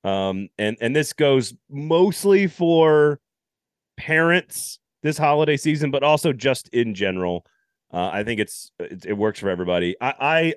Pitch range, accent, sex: 110-150 Hz, American, male